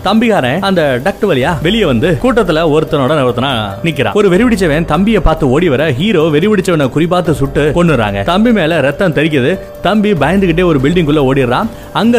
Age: 30-49